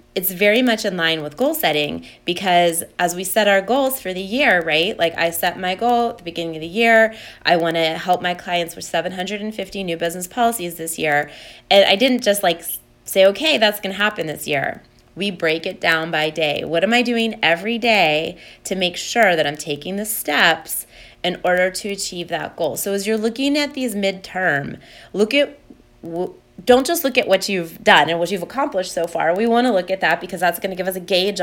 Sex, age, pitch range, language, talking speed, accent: female, 20-39, 170-220 Hz, English, 225 wpm, American